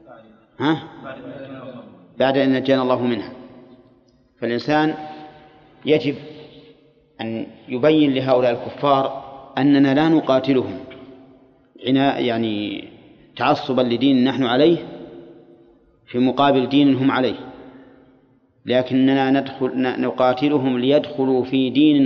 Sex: male